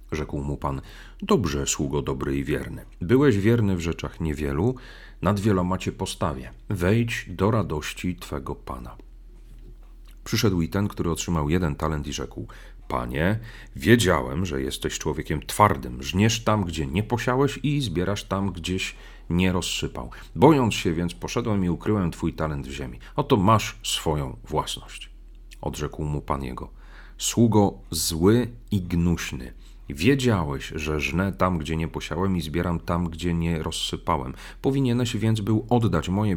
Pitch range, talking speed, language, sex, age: 75-100 Hz, 145 wpm, Polish, male, 40-59